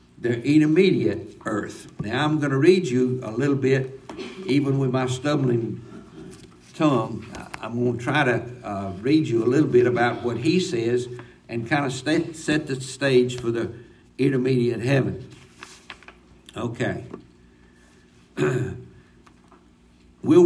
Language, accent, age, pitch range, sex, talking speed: English, American, 60-79, 120-160 Hz, male, 130 wpm